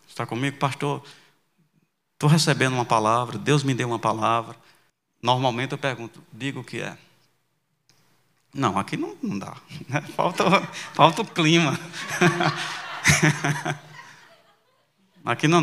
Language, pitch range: Portuguese, 135-180 Hz